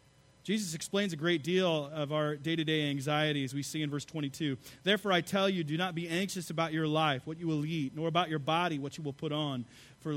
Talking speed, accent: 230 wpm, American